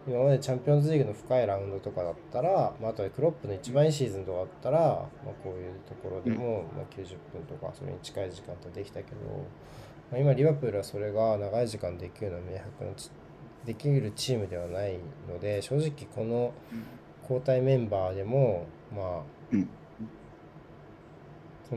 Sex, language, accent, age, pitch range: male, Japanese, native, 20-39, 105-140 Hz